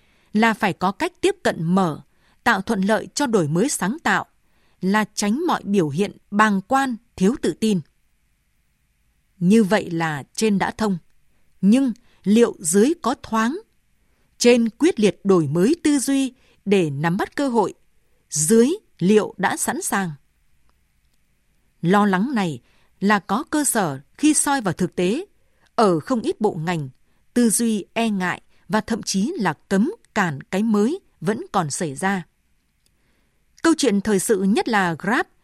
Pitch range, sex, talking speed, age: 180-240 Hz, female, 155 wpm, 20-39